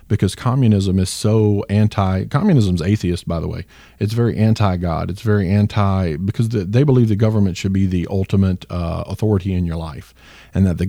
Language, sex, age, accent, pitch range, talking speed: English, male, 40-59, American, 95-110 Hz, 195 wpm